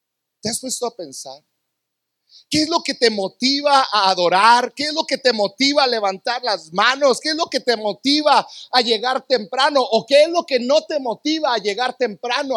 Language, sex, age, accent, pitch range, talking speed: Spanish, male, 40-59, Mexican, 220-300 Hz, 205 wpm